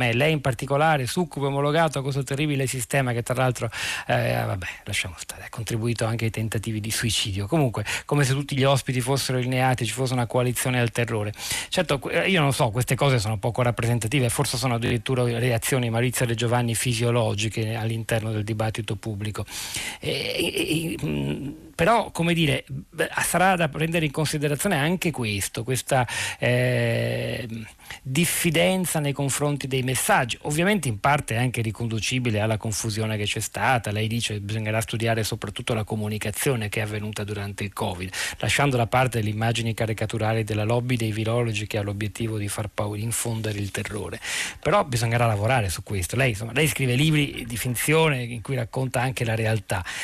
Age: 40-59